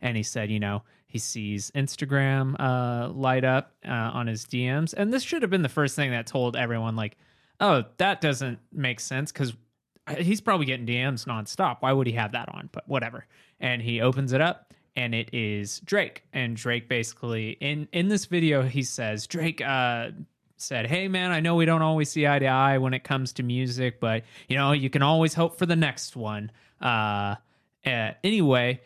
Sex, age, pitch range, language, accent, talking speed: male, 20-39, 120-150 Hz, English, American, 200 wpm